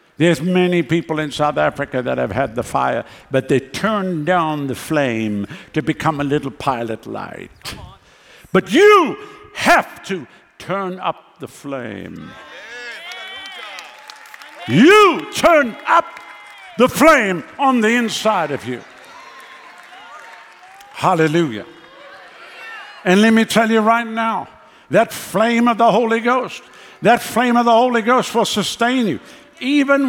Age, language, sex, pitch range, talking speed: 60-79, English, male, 165-225 Hz, 130 wpm